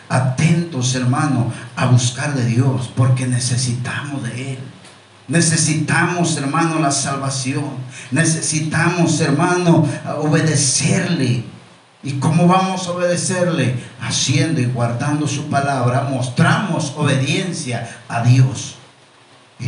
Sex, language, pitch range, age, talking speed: male, Spanish, 130-175 Hz, 50-69, 100 wpm